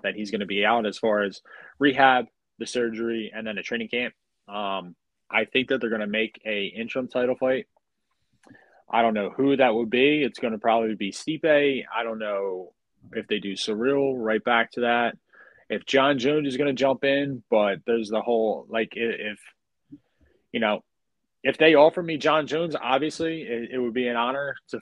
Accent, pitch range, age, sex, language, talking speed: American, 105-130 Hz, 20-39, male, English, 205 wpm